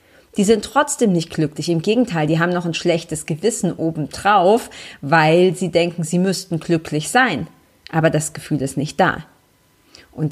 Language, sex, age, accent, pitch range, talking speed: German, female, 40-59, German, 155-190 Hz, 165 wpm